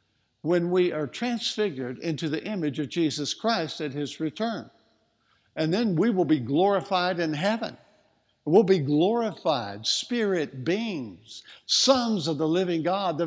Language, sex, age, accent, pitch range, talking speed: English, male, 60-79, American, 155-205 Hz, 145 wpm